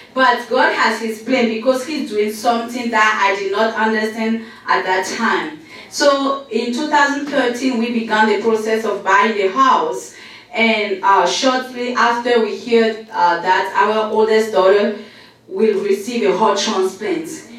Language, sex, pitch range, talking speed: English, female, 215-255 Hz, 150 wpm